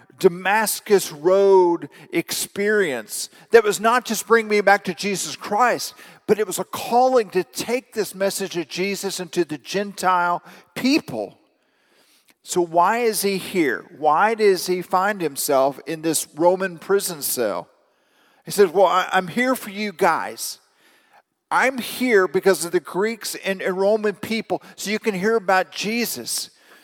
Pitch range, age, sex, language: 175-220 Hz, 50-69, male, English